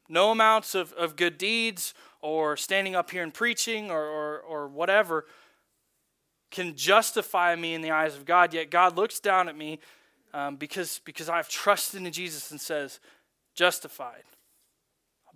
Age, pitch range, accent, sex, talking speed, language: 20-39, 155-200 Hz, American, male, 160 wpm, English